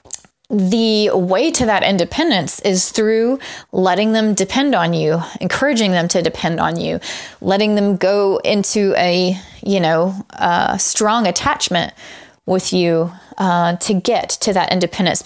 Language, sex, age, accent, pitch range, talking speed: English, female, 20-39, American, 185-240 Hz, 140 wpm